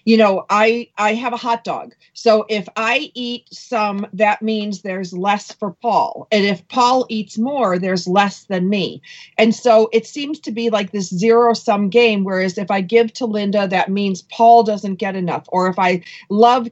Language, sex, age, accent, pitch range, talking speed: English, female, 40-59, American, 195-235 Hz, 195 wpm